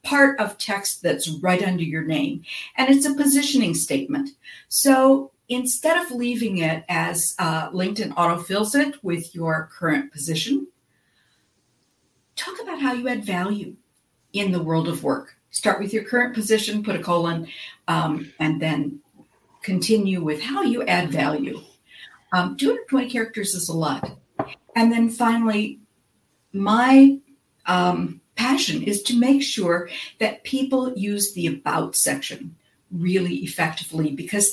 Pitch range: 175-250 Hz